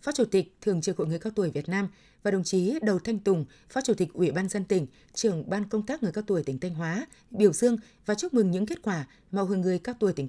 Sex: female